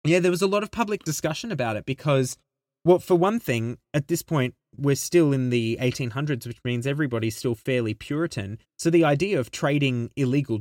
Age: 20-39